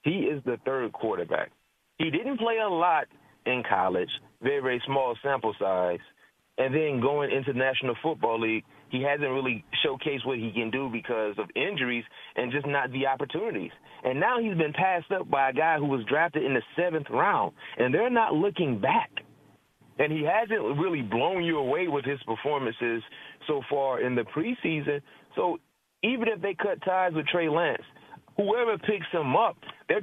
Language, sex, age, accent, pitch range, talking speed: English, male, 30-49, American, 140-205 Hz, 180 wpm